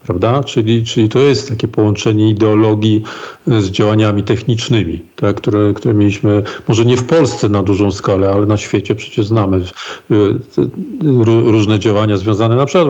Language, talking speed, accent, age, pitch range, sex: Polish, 160 wpm, native, 50-69, 110-130 Hz, male